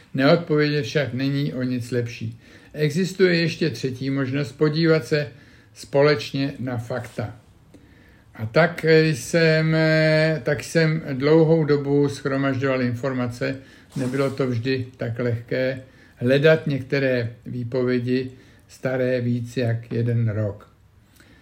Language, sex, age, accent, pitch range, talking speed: Czech, male, 60-79, native, 120-150 Hz, 105 wpm